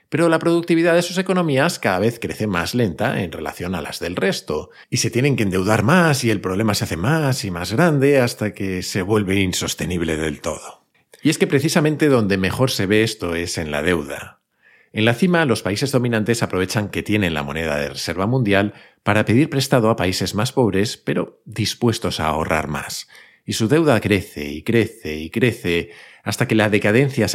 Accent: Spanish